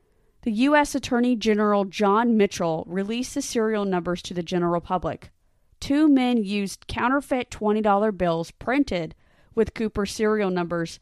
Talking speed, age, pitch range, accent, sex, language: 135 wpm, 30-49, 180-220 Hz, American, female, English